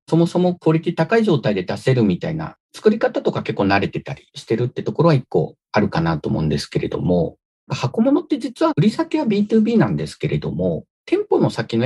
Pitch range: 145-205 Hz